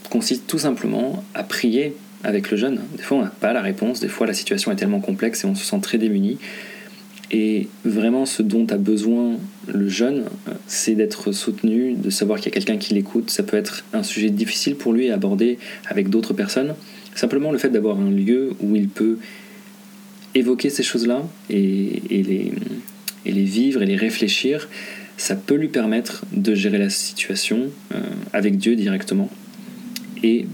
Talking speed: 175 wpm